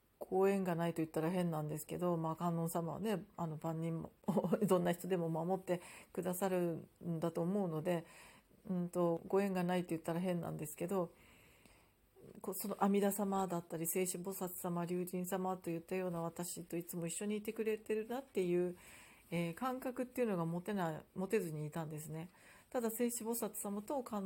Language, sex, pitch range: Japanese, female, 165-205 Hz